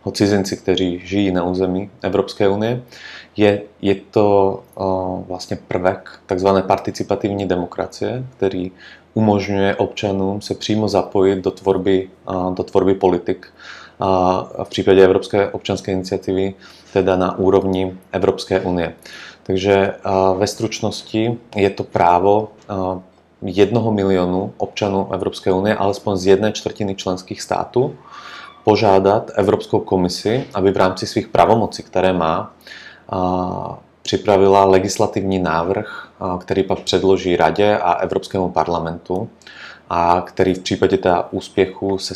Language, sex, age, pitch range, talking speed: Czech, male, 30-49, 90-100 Hz, 120 wpm